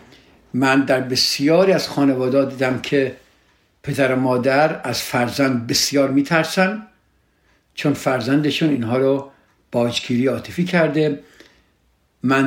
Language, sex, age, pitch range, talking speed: Persian, male, 60-79, 130-175 Hz, 105 wpm